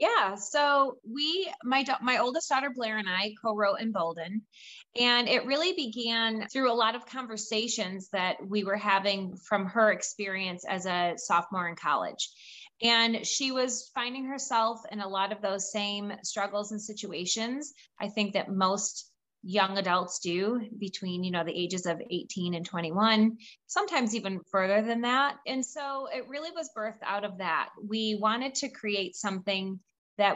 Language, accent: English, American